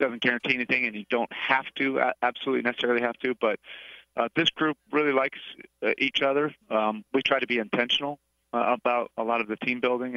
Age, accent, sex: 40-59, American, male